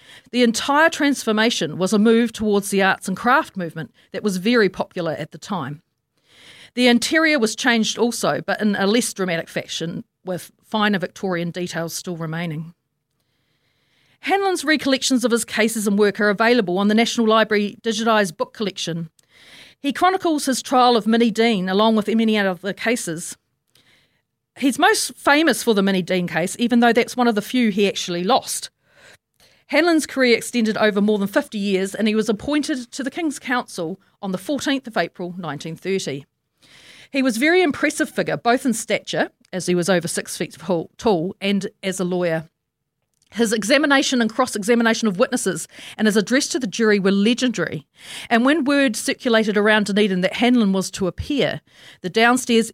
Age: 40-59